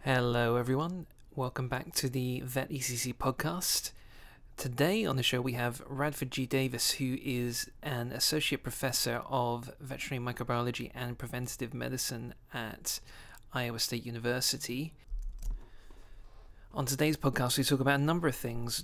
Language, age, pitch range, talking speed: English, 30-49, 120-135 Hz, 135 wpm